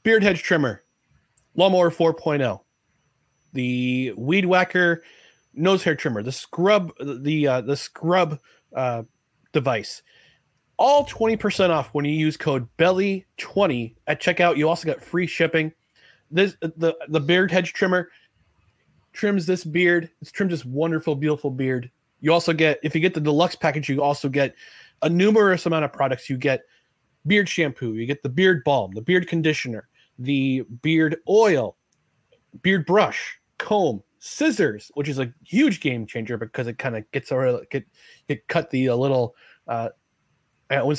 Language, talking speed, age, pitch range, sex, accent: English, 155 wpm, 30-49, 135-180 Hz, male, American